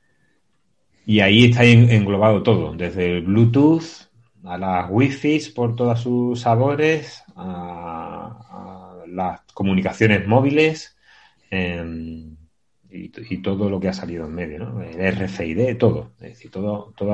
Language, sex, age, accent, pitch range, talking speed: Spanish, male, 30-49, Spanish, 95-120 Hz, 135 wpm